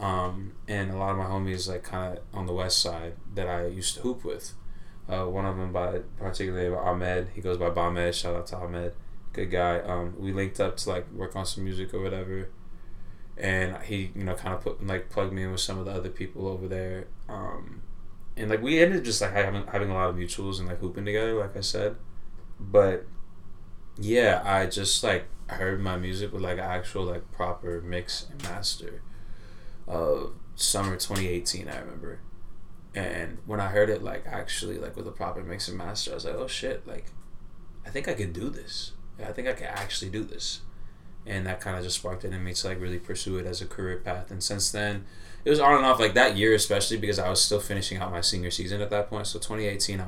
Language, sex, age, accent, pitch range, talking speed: English, male, 20-39, American, 90-100 Hz, 225 wpm